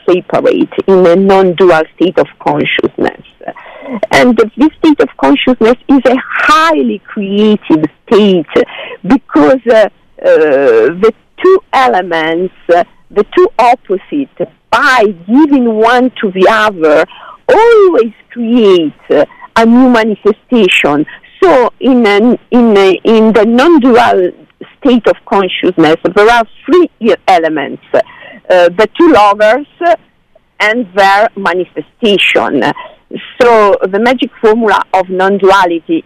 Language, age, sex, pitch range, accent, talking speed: English, 50-69, female, 195-260 Hz, Italian, 110 wpm